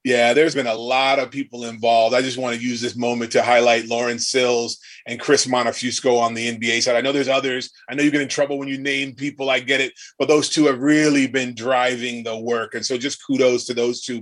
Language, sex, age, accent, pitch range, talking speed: English, male, 30-49, American, 120-140 Hz, 250 wpm